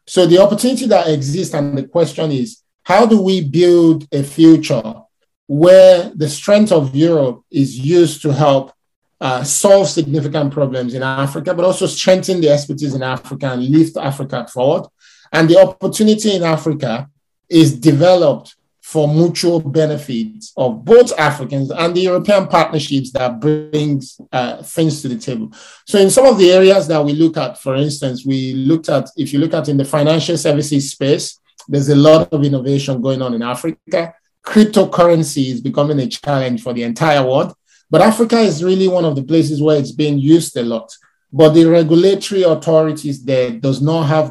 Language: French